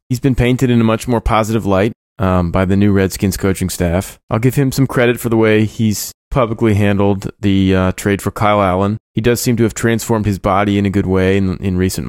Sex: male